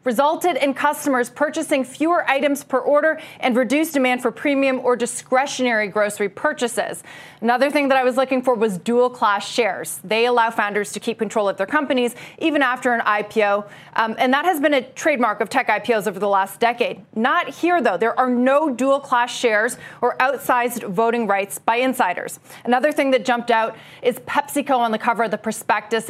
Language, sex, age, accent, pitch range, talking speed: English, female, 30-49, American, 220-275 Hz, 185 wpm